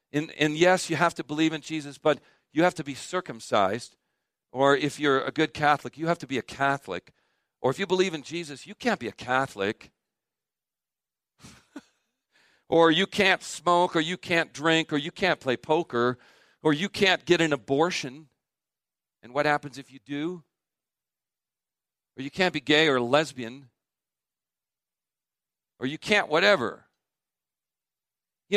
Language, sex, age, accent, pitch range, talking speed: English, male, 50-69, American, 125-175 Hz, 160 wpm